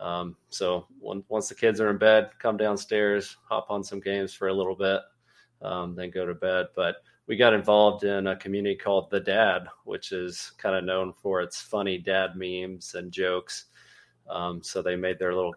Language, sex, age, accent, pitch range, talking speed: English, male, 20-39, American, 95-100 Hz, 200 wpm